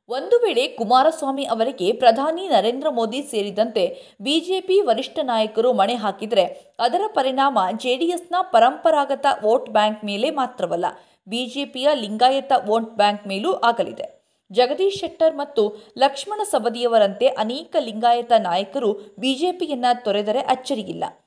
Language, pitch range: Kannada, 215-285 Hz